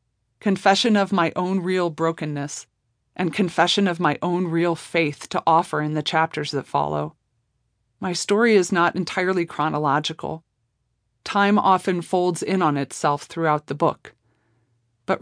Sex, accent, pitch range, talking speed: female, American, 140-185 Hz, 140 wpm